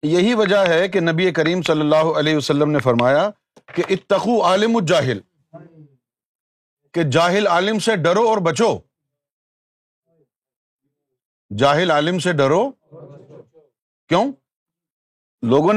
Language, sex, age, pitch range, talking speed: Urdu, male, 50-69, 150-210 Hz, 110 wpm